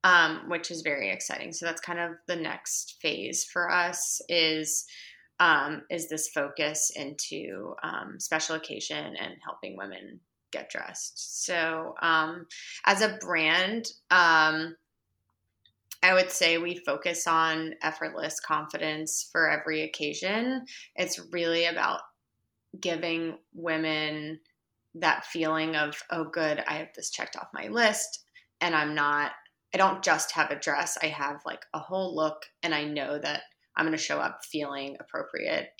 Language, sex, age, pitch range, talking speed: English, female, 20-39, 150-175 Hz, 150 wpm